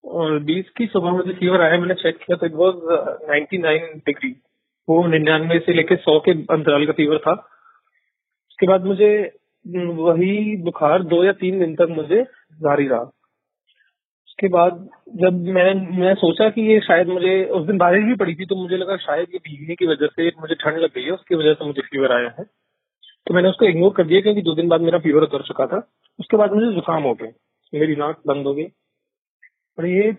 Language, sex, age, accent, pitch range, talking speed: Hindi, male, 30-49, native, 160-200 Hz, 205 wpm